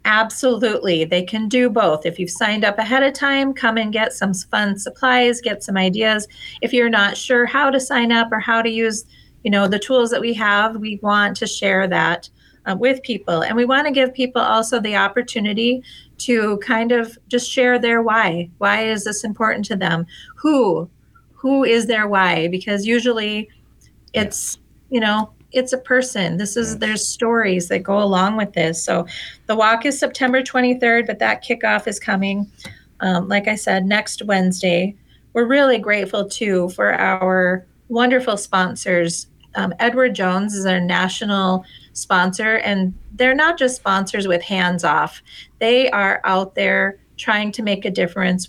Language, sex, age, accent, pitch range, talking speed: English, female, 30-49, American, 190-235 Hz, 175 wpm